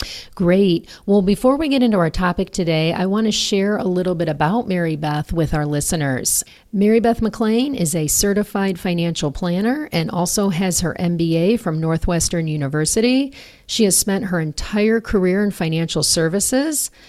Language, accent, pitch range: English, American, 165-205 Hz